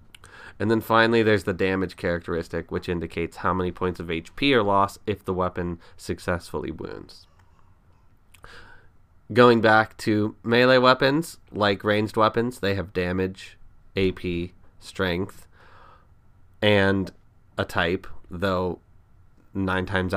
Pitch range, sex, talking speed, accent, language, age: 90-105 Hz, male, 120 wpm, American, English, 30-49